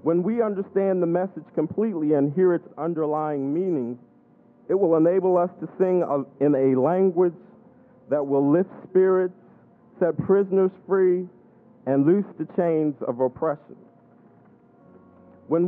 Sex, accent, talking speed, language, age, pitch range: male, American, 130 wpm, English, 50-69, 150-185 Hz